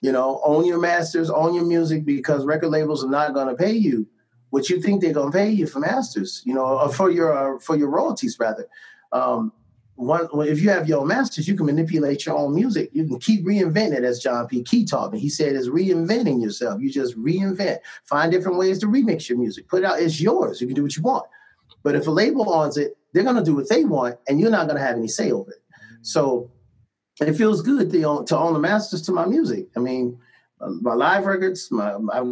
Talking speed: 240 wpm